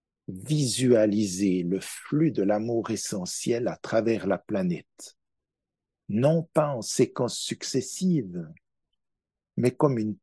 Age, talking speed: 60-79, 105 wpm